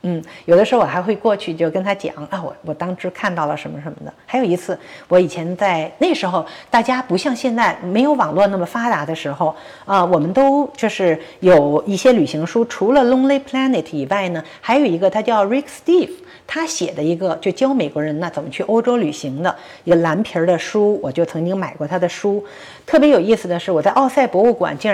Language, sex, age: Chinese, female, 50-69